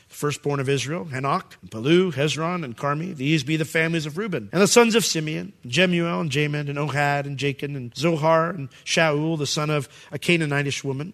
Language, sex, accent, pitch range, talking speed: English, male, American, 150-190 Hz, 205 wpm